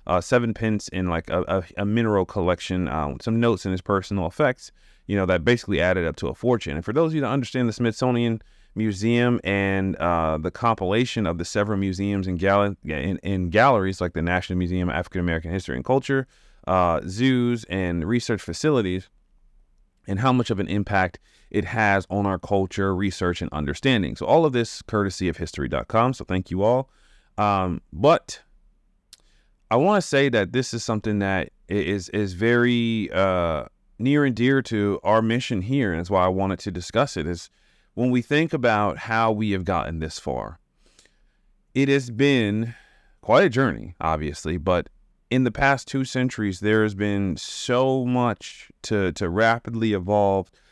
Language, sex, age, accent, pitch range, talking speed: English, male, 30-49, American, 90-115 Hz, 175 wpm